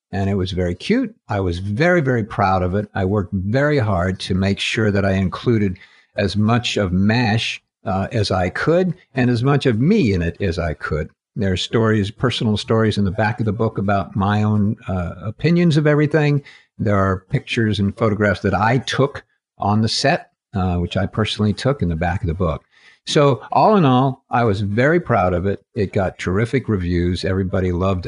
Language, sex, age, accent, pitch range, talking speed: English, male, 50-69, American, 95-125 Hz, 205 wpm